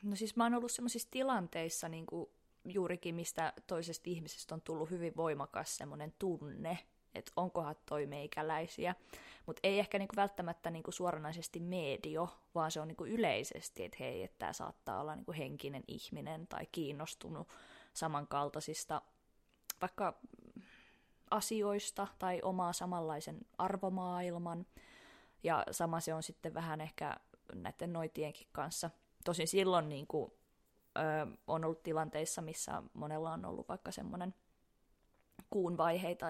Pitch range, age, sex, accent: 160-195 Hz, 20-39, female, native